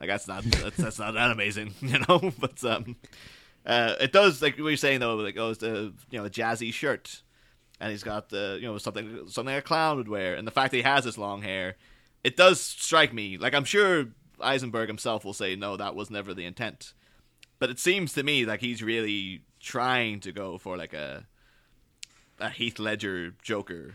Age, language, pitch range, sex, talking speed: 30-49, English, 100-130 Hz, male, 215 wpm